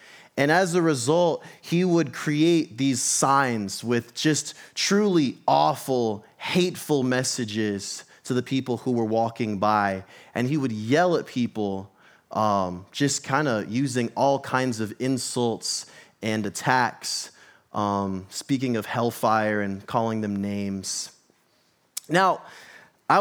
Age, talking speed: 30-49, 125 wpm